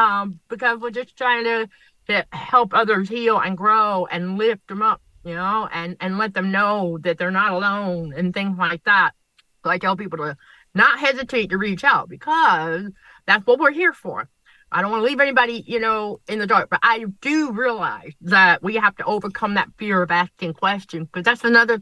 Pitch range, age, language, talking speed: 175-230 Hz, 50-69, English, 205 wpm